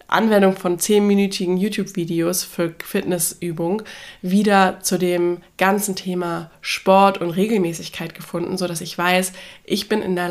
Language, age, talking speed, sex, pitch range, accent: German, 20-39, 130 wpm, female, 180-210 Hz, German